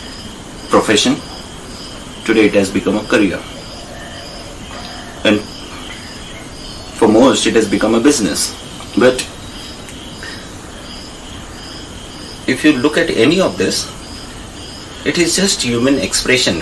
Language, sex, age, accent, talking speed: English, male, 30-49, Indian, 100 wpm